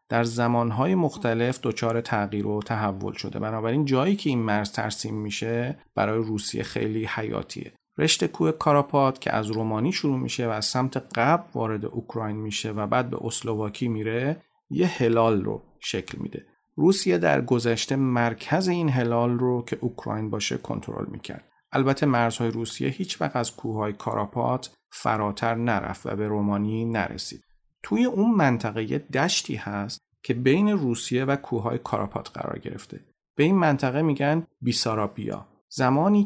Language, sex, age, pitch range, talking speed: Persian, male, 40-59, 110-140 Hz, 145 wpm